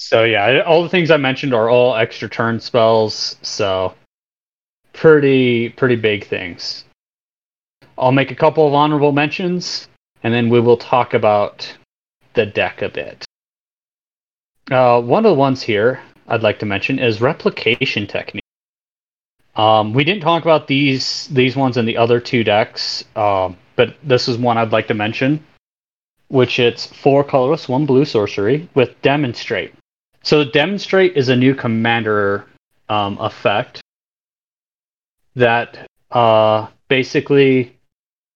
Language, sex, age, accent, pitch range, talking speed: English, male, 30-49, American, 115-145 Hz, 140 wpm